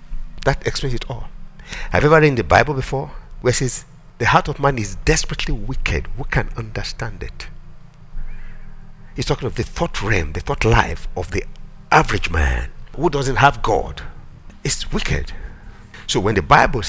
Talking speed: 175 wpm